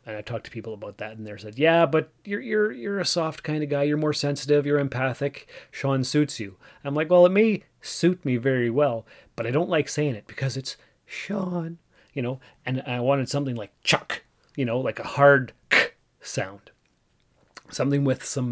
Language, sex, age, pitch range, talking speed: English, male, 30-49, 115-150 Hz, 205 wpm